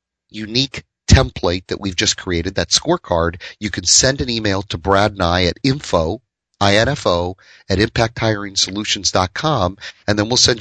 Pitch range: 95-120 Hz